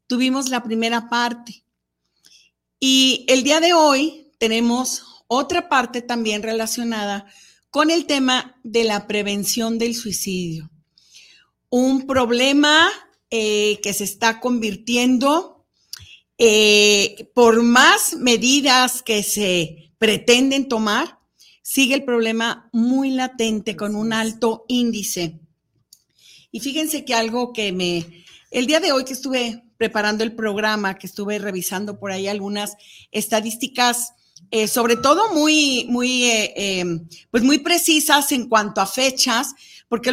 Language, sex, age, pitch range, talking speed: Spanish, female, 40-59, 215-265 Hz, 120 wpm